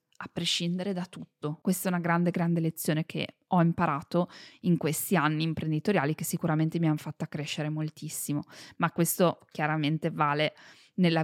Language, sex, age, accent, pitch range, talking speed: Italian, female, 20-39, native, 160-195 Hz, 155 wpm